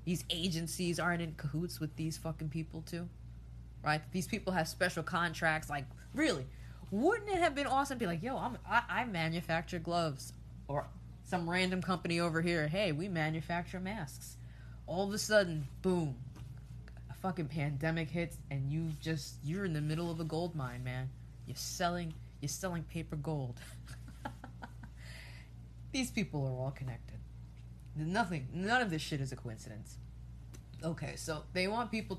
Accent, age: American, 20-39